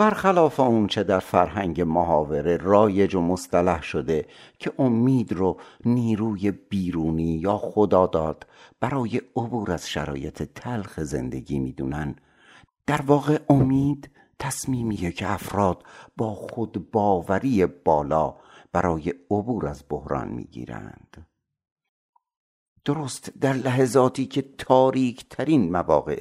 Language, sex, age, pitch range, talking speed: Persian, male, 60-79, 80-125 Hz, 105 wpm